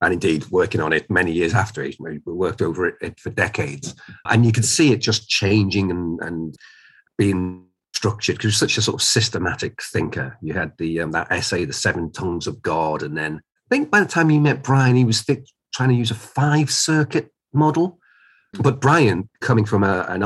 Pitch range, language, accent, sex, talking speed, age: 95-130 Hz, English, British, male, 205 wpm, 40-59